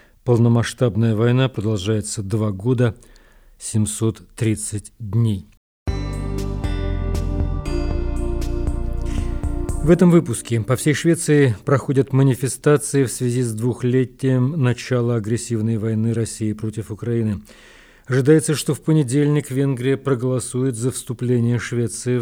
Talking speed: 90 wpm